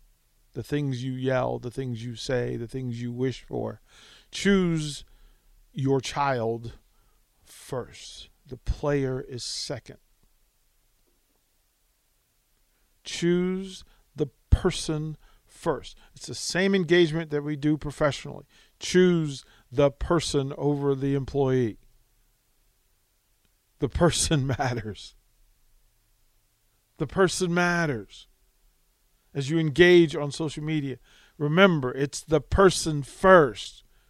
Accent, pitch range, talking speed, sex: American, 115-155 Hz, 100 wpm, male